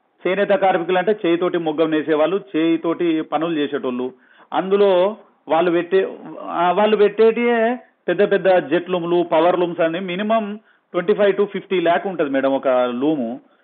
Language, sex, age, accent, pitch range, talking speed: Telugu, male, 40-59, native, 150-200 Hz, 130 wpm